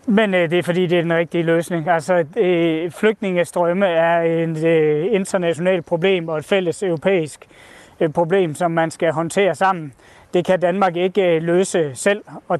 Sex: male